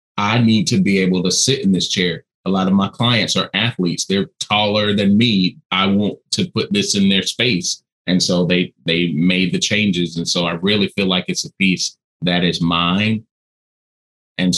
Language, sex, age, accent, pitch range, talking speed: English, male, 30-49, American, 90-110 Hz, 200 wpm